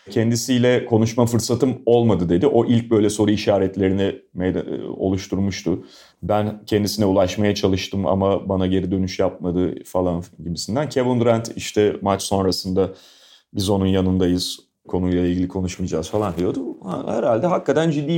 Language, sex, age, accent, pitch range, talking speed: Turkish, male, 30-49, native, 95-120 Hz, 130 wpm